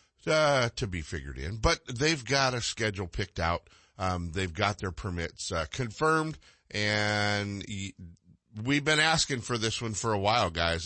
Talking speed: 165 wpm